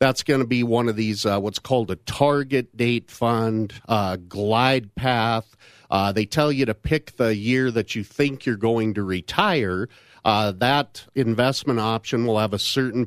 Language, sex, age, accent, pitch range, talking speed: English, male, 50-69, American, 110-130 Hz, 185 wpm